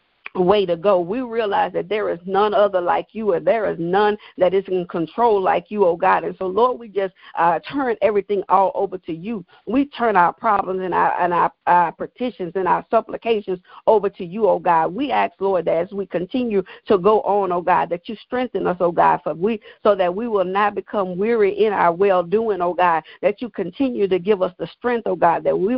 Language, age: English, 50-69